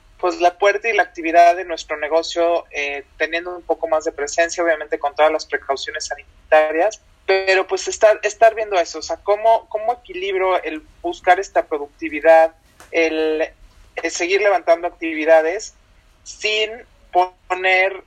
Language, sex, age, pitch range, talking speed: Spanish, male, 30-49, 160-205 Hz, 145 wpm